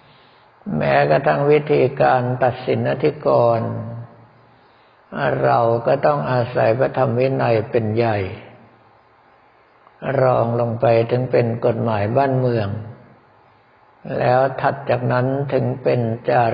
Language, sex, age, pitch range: Thai, male, 60-79, 115-135 Hz